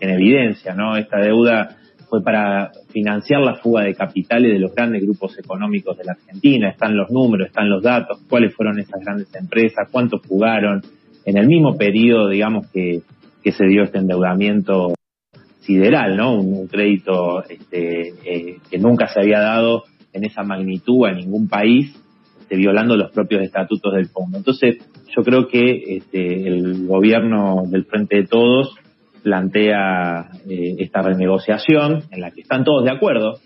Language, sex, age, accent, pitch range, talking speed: Spanish, male, 30-49, Argentinian, 95-120 Hz, 160 wpm